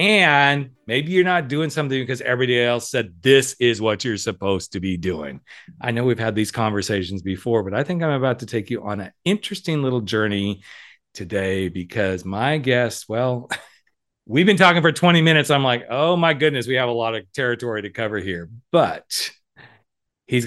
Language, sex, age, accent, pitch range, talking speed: English, male, 40-59, American, 100-130 Hz, 190 wpm